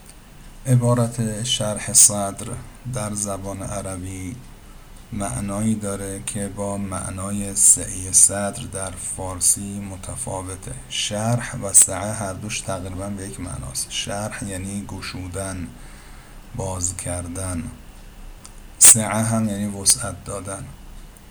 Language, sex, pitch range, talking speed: Persian, male, 95-110 Hz, 100 wpm